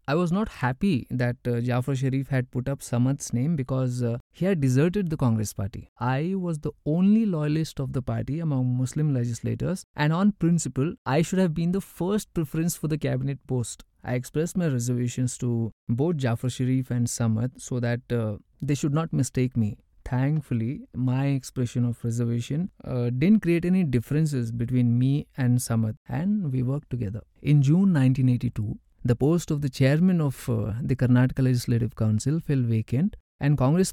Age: 20-39